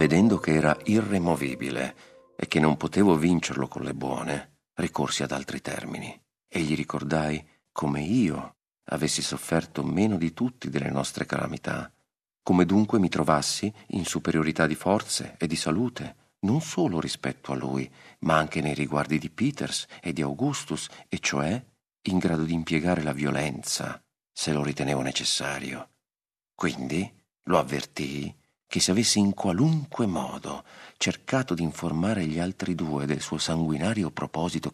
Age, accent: 50-69, native